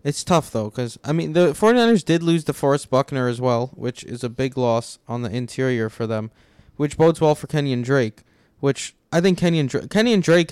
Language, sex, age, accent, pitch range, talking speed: English, male, 20-39, American, 120-155 Hz, 210 wpm